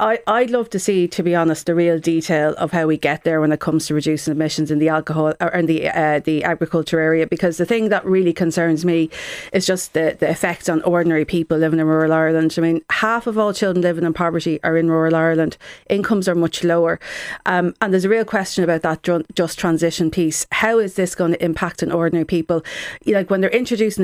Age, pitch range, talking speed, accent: 40-59, 165-190 Hz, 230 wpm, Irish